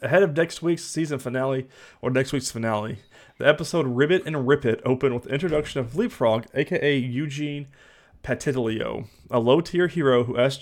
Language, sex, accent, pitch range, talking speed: English, male, American, 115-140 Hz, 170 wpm